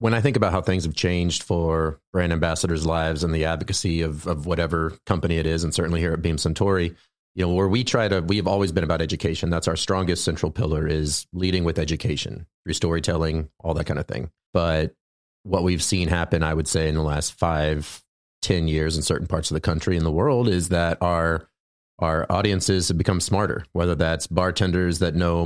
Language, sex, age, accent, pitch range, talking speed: English, male, 30-49, American, 80-90 Hz, 210 wpm